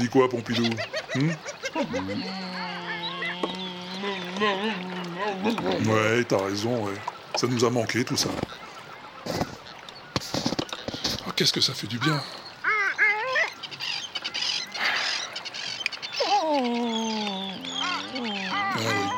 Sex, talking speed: female, 70 wpm